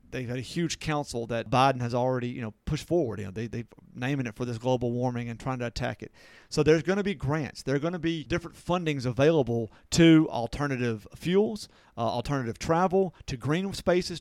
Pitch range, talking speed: 125-155 Hz, 215 wpm